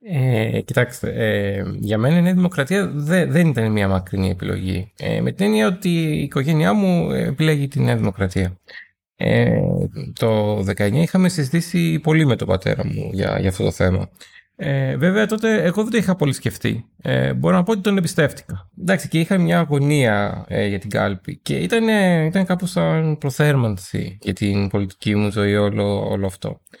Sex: male